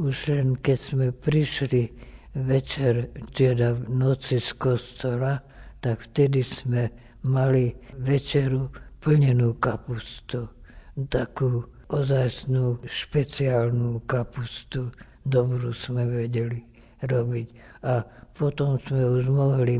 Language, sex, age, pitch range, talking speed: Slovak, female, 60-79, 120-130 Hz, 95 wpm